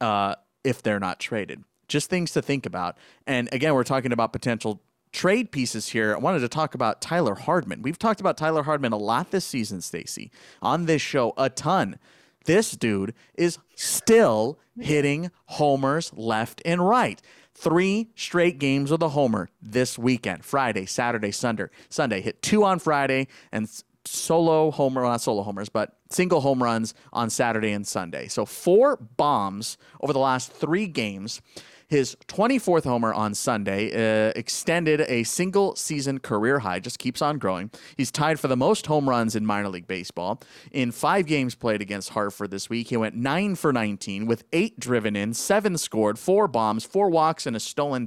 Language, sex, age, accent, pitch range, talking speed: English, male, 30-49, American, 110-165 Hz, 170 wpm